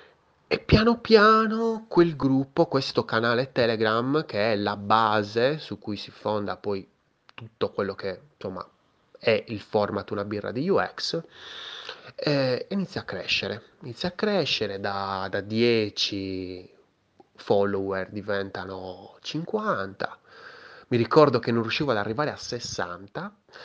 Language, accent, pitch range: Italian, native, 105-170 Hz